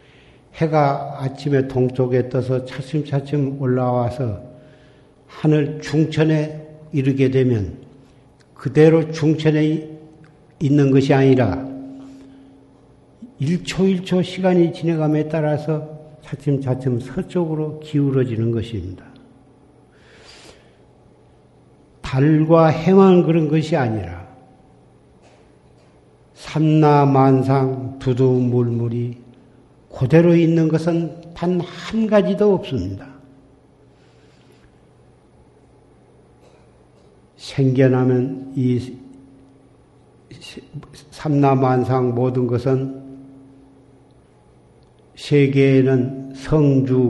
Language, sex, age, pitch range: Korean, male, 60-79, 130-150 Hz